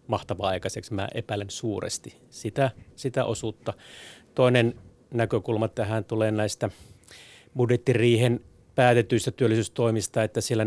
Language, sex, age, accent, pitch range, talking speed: Finnish, male, 30-49, native, 105-125 Hz, 100 wpm